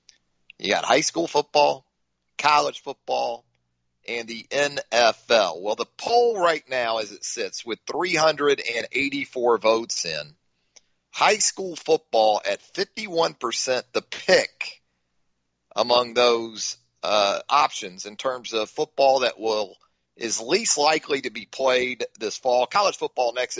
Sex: male